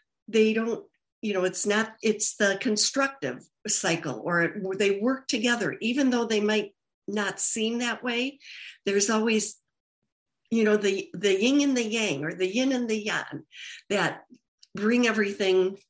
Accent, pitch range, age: American, 175-220 Hz, 60-79